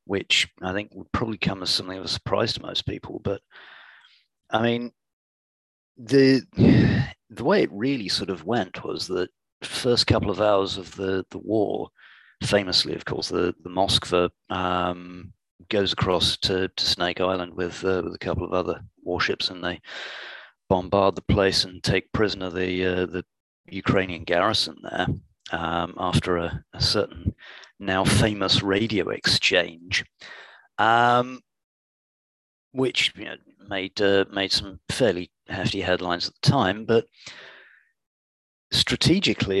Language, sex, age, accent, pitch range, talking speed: English, male, 40-59, British, 90-110 Hz, 145 wpm